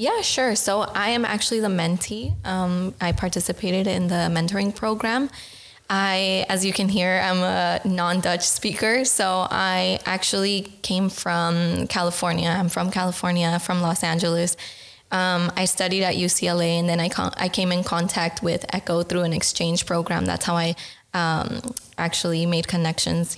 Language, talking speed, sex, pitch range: Dutch, 155 wpm, female, 170-195 Hz